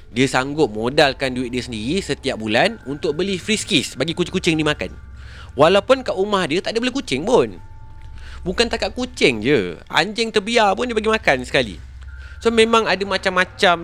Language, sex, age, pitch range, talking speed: Malay, male, 30-49, 115-190 Hz, 175 wpm